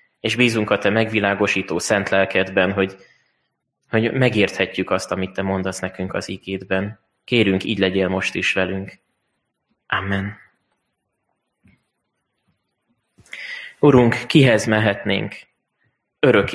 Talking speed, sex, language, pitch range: 100 wpm, male, Hungarian, 95-120 Hz